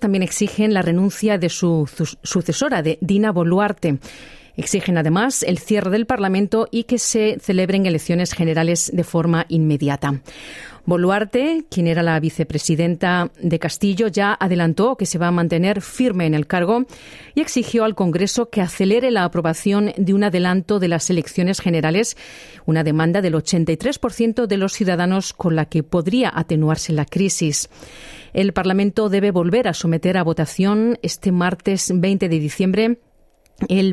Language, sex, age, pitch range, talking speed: Spanish, female, 40-59, 165-205 Hz, 155 wpm